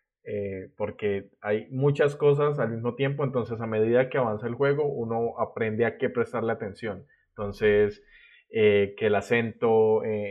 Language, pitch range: English, 105-120 Hz